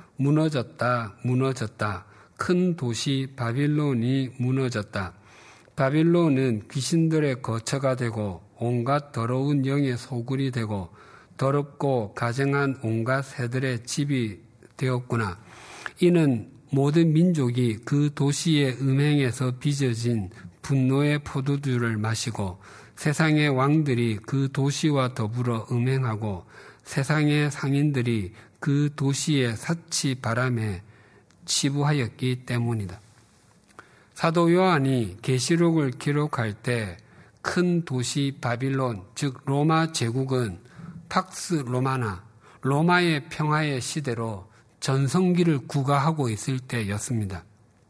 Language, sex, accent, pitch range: Korean, male, native, 115-145 Hz